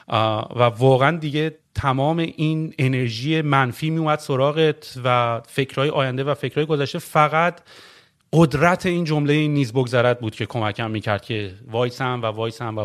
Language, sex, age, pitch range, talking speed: Persian, male, 30-49, 130-170 Hz, 155 wpm